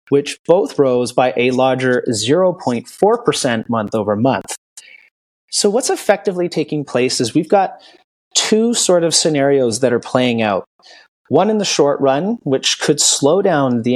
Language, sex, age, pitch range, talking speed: English, male, 30-49, 130-180 Hz, 155 wpm